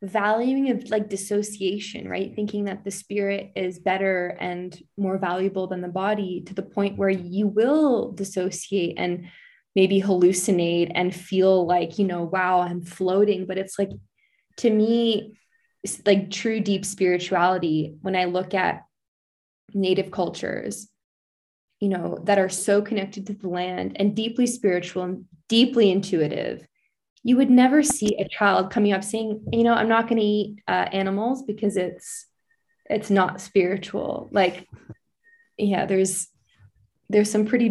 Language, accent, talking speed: English, American, 150 wpm